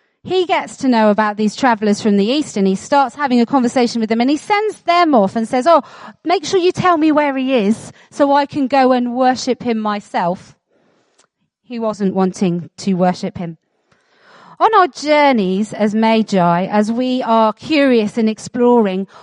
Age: 40-59